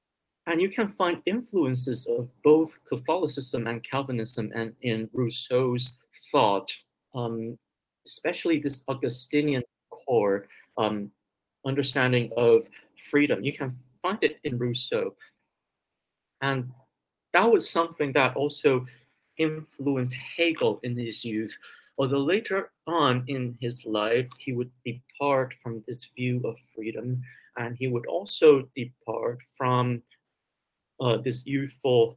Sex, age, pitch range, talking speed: male, 40-59, 115-140 Hz, 120 wpm